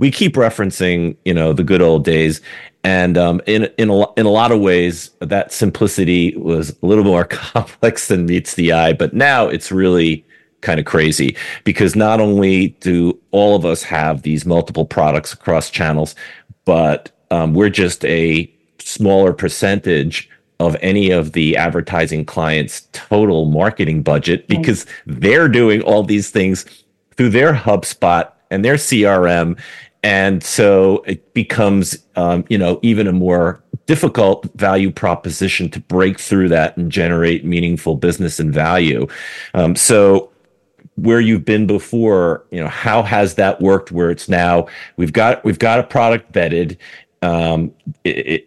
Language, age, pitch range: English, 40-59, 85-105 Hz